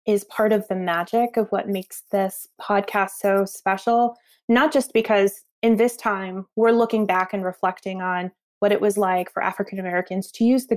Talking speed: 185 wpm